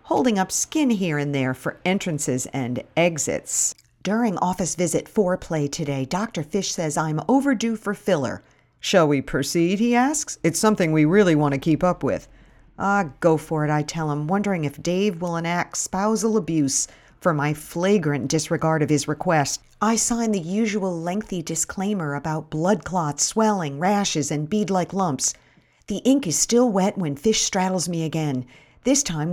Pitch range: 150-205 Hz